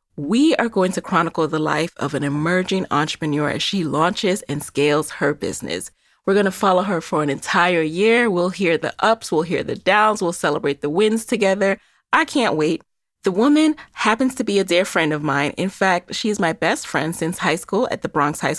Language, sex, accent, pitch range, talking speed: English, female, American, 160-225 Hz, 215 wpm